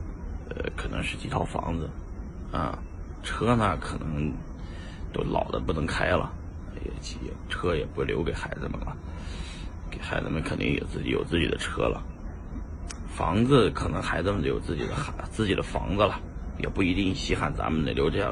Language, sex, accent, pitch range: Chinese, male, native, 80-95 Hz